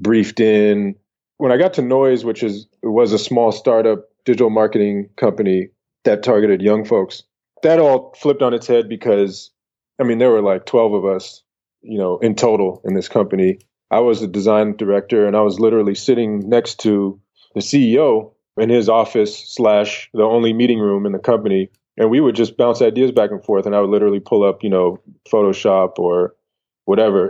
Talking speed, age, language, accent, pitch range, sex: 195 wpm, 20-39, English, American, 100-120 Hz, male